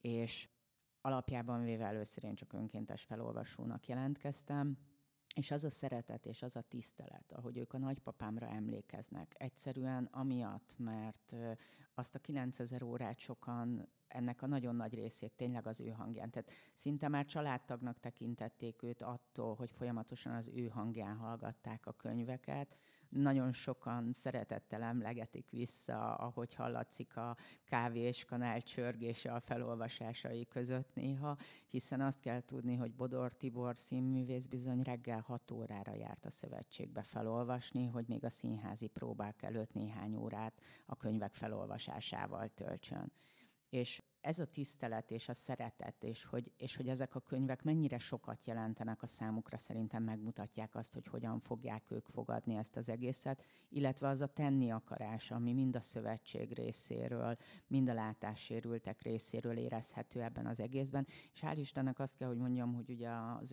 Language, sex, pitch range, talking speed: Hungarian, female, 115-130 Hz, 145 wpm